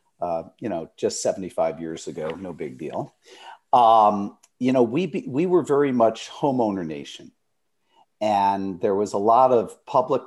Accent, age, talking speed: American, 50-69, 160 wpm